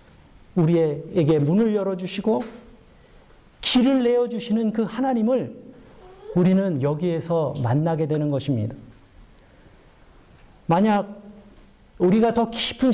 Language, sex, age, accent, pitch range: Korean, male, 50-69, native, 160-235 Hz